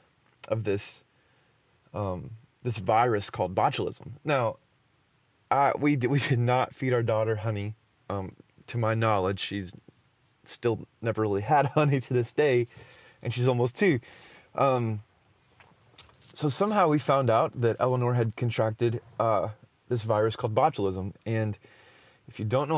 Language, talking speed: English, 145 wpm